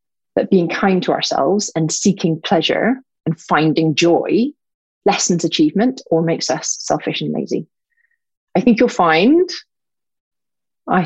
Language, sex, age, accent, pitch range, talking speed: English, female, 30-49, British, 160-210 Hz, 130 wpm